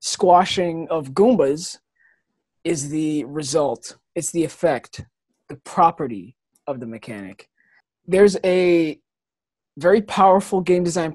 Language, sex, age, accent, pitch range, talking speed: English, male, 20-39, American, 160-205 Hz, 110 wpm